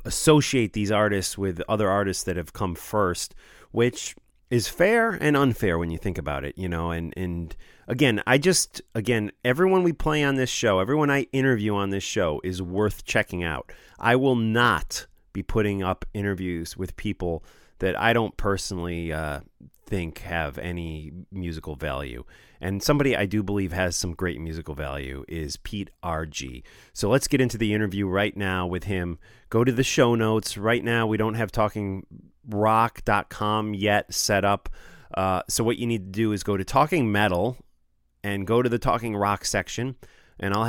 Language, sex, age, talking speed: English, male, 30-49, 180 wpm